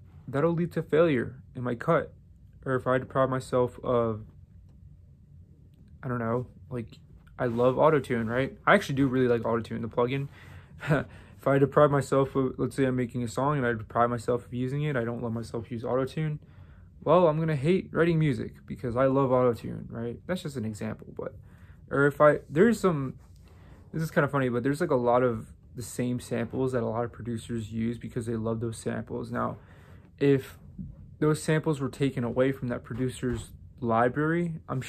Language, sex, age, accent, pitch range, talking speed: English, male, 20-39, American, 115-135 Hz, 190 wpm